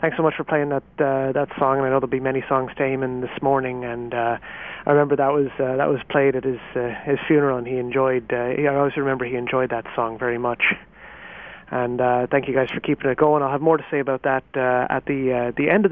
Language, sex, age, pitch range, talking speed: English, male, 30-49, 135-170 Hz, 285 wpm